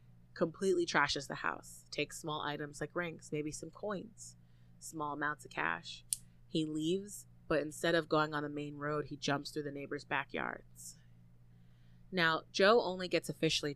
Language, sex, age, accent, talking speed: English, female, 20-39, American, 160 wpm